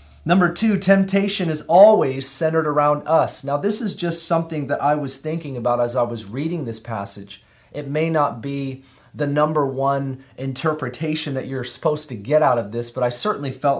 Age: 30-49